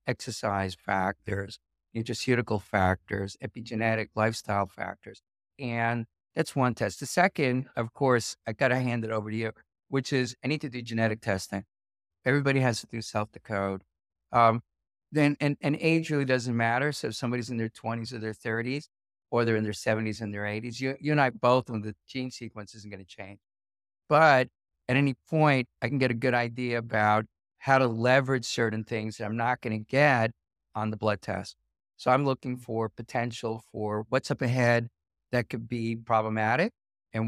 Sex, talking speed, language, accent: male, 180 wpm, English, American